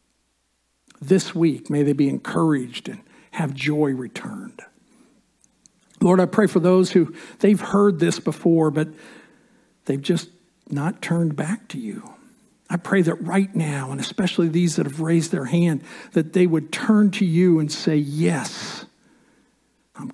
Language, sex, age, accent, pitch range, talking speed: English, male, 60-79, American, 150-200 Hz, 150 wpm